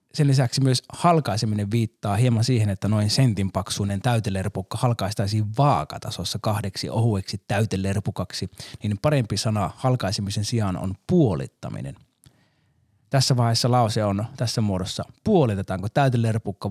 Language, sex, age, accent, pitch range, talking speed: Finnish, male, 20-39, native, 105-135 Hz, 115 wpm